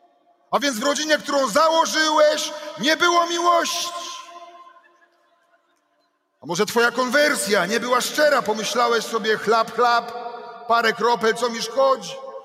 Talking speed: 120 wpm